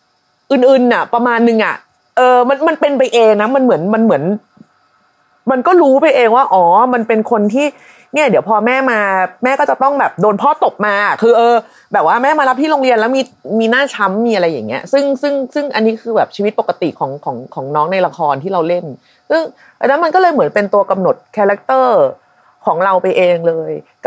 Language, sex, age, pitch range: Thai, female, 30-49, 150-235 Hz